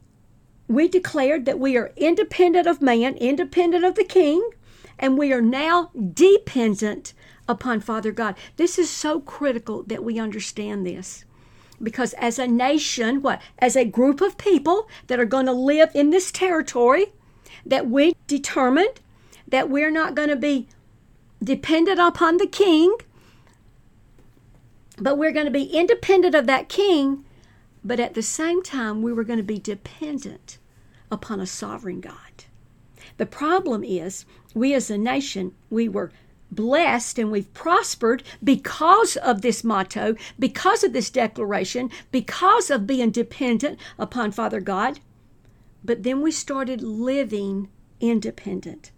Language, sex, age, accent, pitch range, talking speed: English, female, 50-69, American, 215-310 Hz, 145 wpm